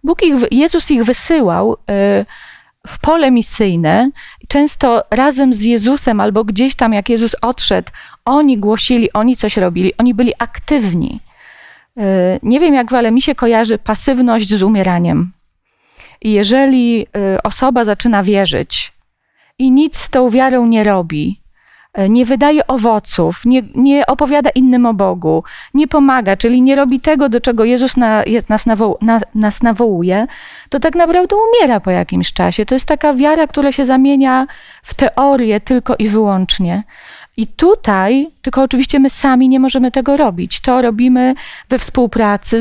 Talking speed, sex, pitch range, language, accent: 145 wpm, female, 210-265 Hz, Polish, native